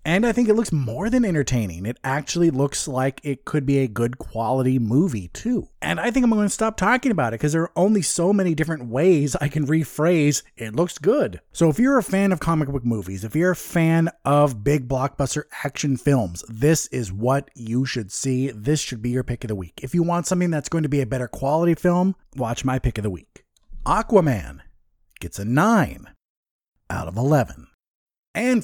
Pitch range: 135-185 Hz